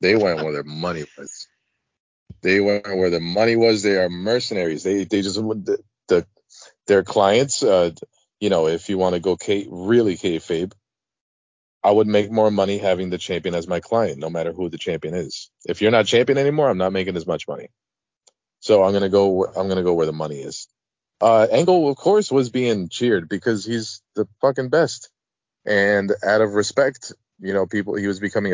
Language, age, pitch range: English, 30-49, 85-110 Hz